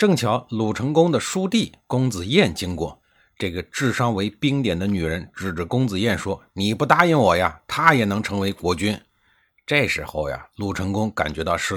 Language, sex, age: Chinese, male, 50-69